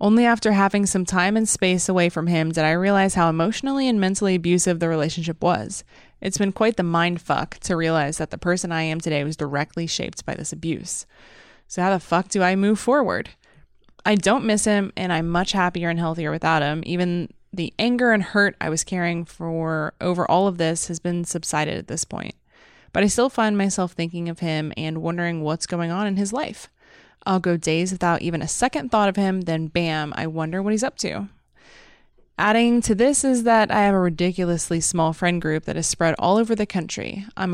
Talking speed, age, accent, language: 215 wpm, 20-39, American, English